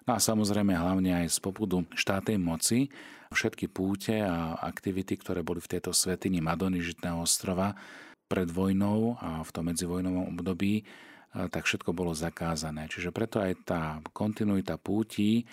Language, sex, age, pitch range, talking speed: Slovak, male, 40-59, 85-95 Hz, 145 wpm